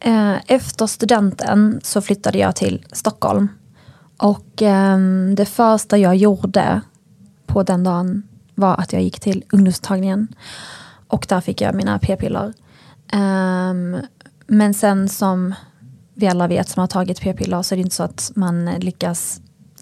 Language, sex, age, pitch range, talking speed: Swedish, female, 20-39, 180-200 Hz, 140 wpm